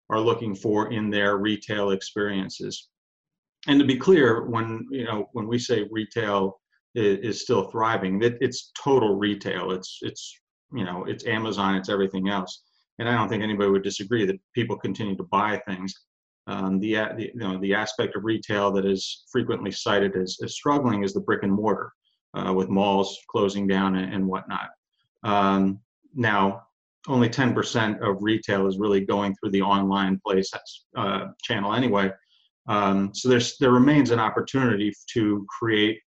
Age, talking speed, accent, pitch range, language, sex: 40-59, 170 wpm, American, 95-110 Hz, English, male